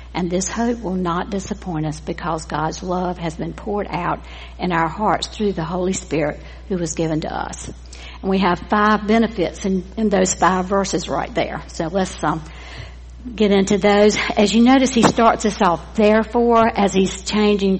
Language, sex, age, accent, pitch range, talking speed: English, female, 60-79, American, 165-200 Hz, 185 wpm